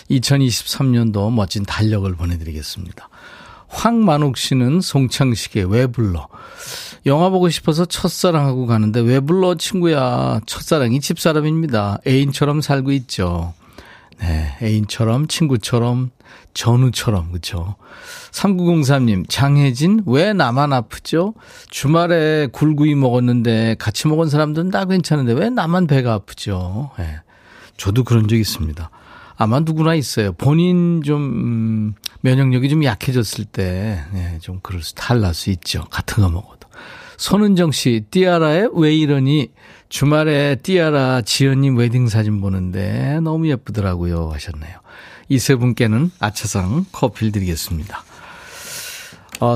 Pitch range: 100-155 Hz